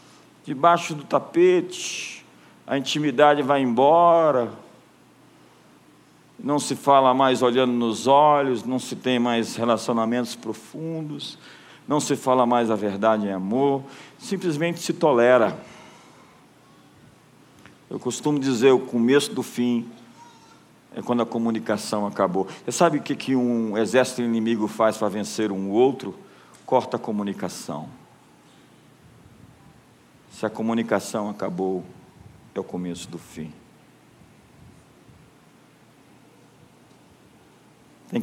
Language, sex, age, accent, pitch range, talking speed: Portuguese, male, 50-69, Brazilian, 110-140 Hz, 110 wpm